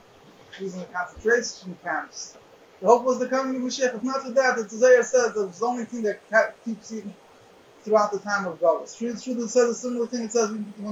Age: 30-49